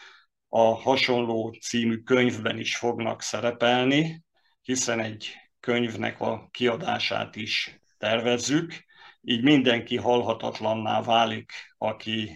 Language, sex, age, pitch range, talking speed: Hungarian, male, 50-69, 115-130 Hz, 90 wpm